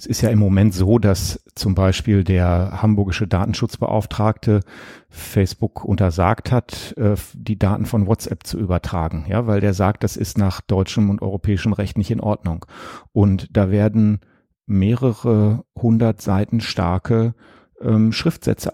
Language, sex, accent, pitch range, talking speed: German, male, German, 100-115 Hz, 140 wpm